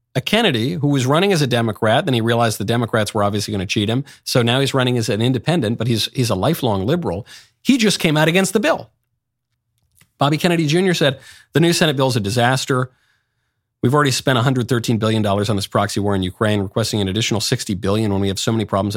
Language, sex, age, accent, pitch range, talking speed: English, male, 40-59, American, 105-130 Hz, 230 wpm